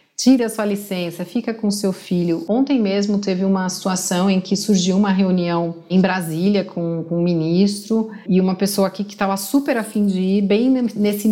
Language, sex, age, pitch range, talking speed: Portuguese, female, 30-49, 185-215 Hz, 190 wpm